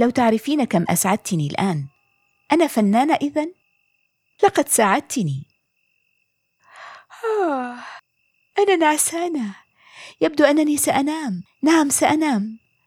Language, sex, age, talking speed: Arabic, female, 30-49, 80 wpm